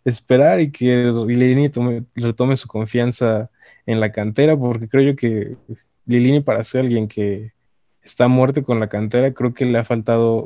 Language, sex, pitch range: Spanish, male, 110-130 Hz